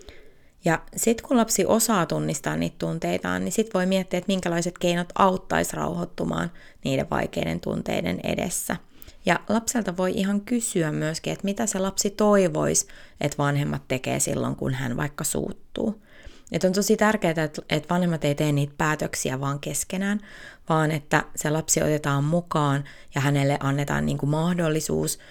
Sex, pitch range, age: female, 140-200 Hz, 20-39